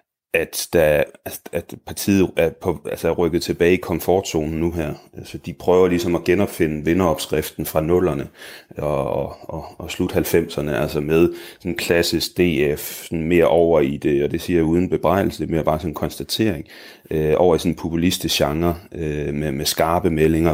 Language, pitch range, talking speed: Danish, 75-90 Hz, 175 wpm